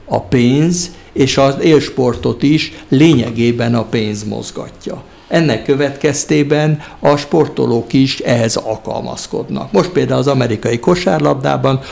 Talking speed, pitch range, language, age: 110 wpm, 120-150 Hz, Hungarian, 60-79